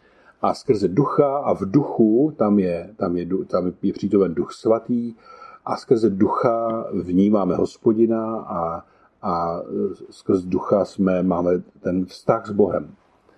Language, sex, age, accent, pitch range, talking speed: Czech, male, 50-69, native, 100-140 Hz, 135 wpm